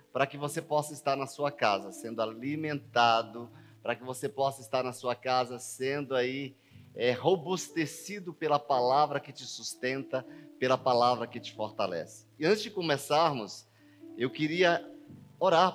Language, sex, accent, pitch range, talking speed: Portuguese, male, Brazilian, 130-155 Hz, 150 wpm